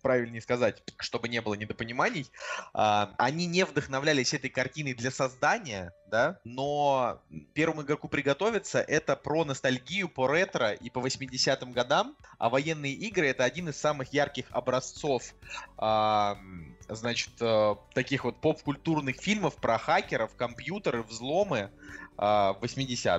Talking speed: 115 wpm